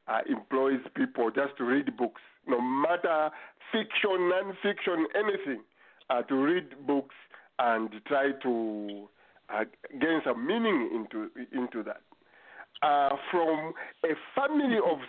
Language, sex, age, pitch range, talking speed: English, male, 50-69, 125-210 Hz, 125 wpm